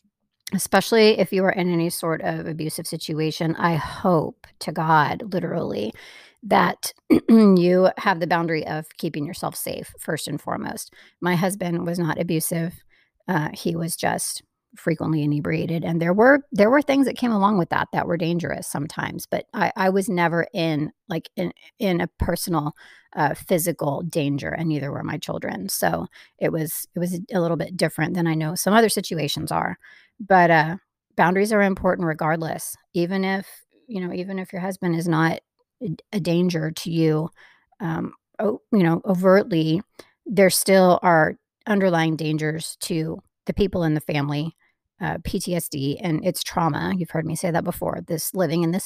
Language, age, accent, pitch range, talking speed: English, 40-59, American, 160-190 Hz, 170 wpm